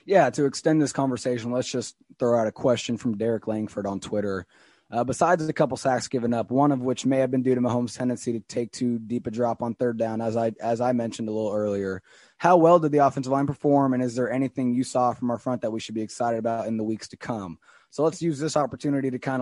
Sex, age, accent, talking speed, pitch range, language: male, 20-39, American, 260 wpm, 115-145 Hz, English